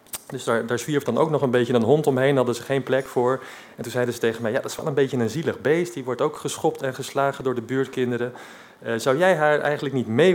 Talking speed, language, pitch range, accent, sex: 275 wpm, Dutch, 120-155 Hz, Dutch, male